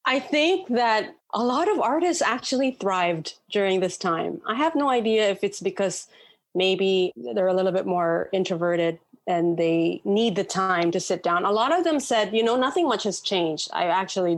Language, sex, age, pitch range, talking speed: English, female, 30-49, 170-210 Hz, 195 wpm